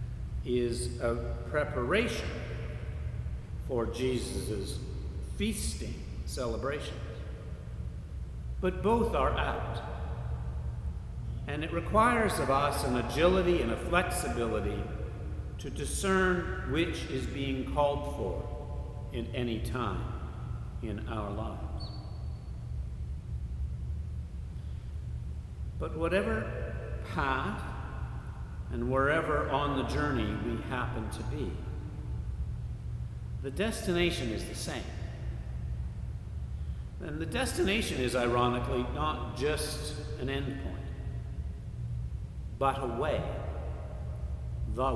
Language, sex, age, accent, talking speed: English, male, 60-79, American, 85 wpm